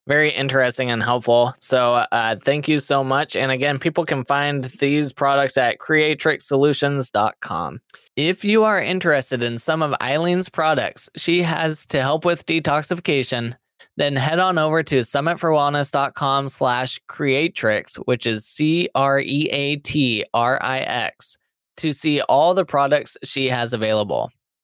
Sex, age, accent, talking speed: male, 20-39, American, 125 wpm